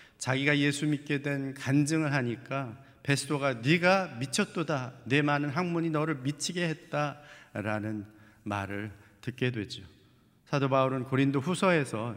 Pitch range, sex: 125-165 Hz, male